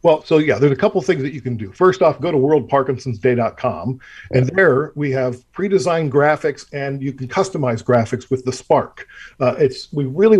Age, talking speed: 40-59, 200 wpm